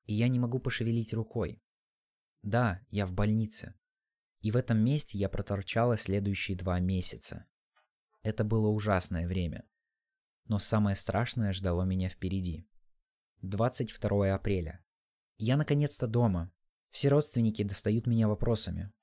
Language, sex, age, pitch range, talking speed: Russian, male, 20-39, 95-120 Hz, 125 wpm